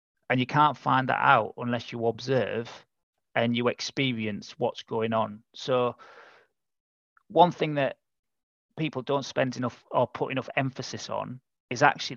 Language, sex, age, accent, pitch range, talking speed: English, male, 30-49, British, 115-130 Hz, 150 wpm